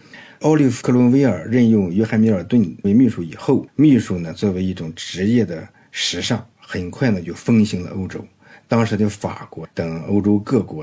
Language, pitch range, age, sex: Chinese, 90-115 Hz, 50-69, male